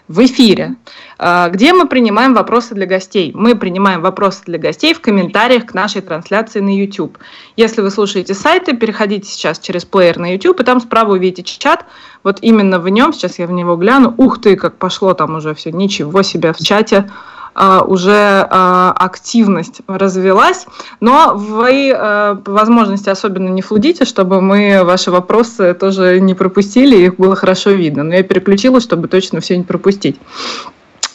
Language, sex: Russian, female